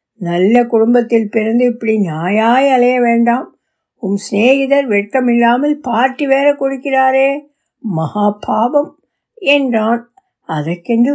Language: Tamil